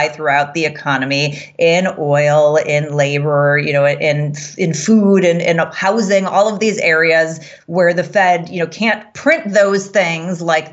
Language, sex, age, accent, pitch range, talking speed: English, female, 30-49, American, 155-200 Hz, 170 wpm